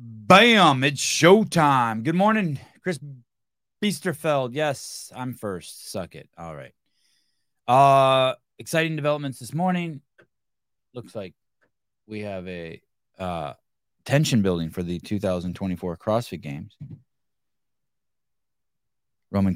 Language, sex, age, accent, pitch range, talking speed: English, male, 20-39, American, 90-125 Hz, 100 wpm